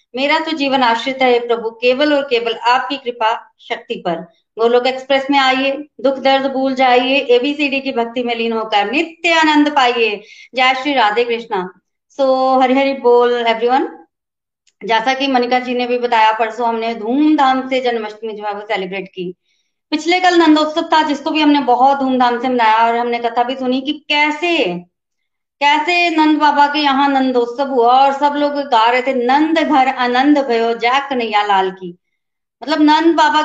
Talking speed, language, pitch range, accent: 170 wpm, Hindi, 235-285 Hz, native